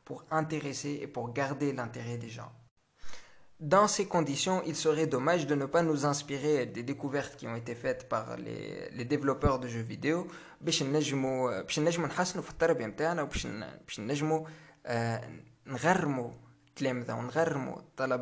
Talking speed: 105 wpm